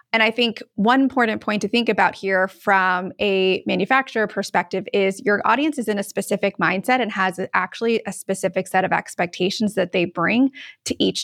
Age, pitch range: 20-39, 200-260 Hz